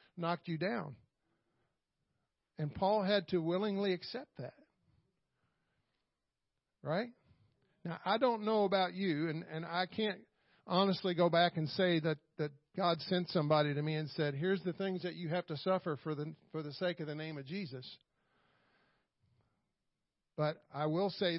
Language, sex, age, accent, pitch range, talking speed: English, male, 50-69, American, 160-205 Hz, 160 wpm